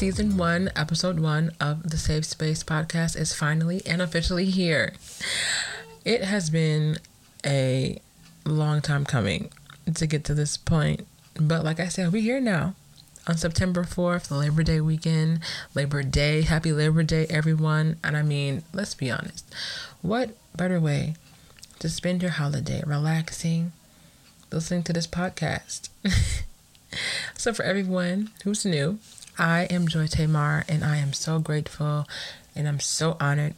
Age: 30-49